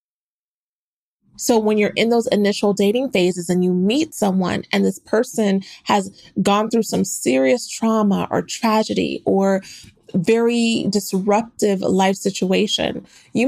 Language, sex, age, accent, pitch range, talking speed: English, female, 20-39, American, 200-245 Hz, 130 wpm